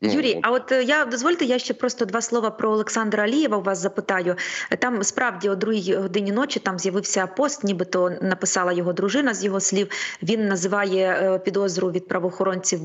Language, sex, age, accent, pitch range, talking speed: Ukrainian, female, 20-39, native, 195-245 Hz, 175 wpm